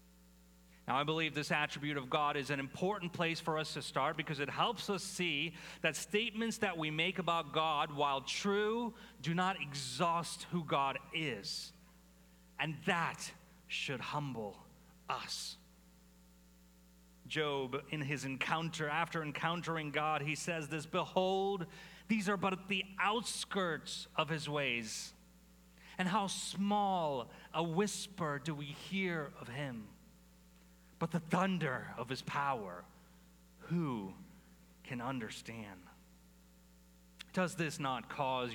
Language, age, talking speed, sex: English, 30-49, 130 wpm, male